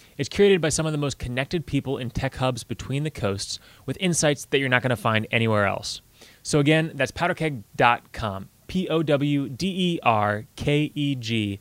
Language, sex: English, male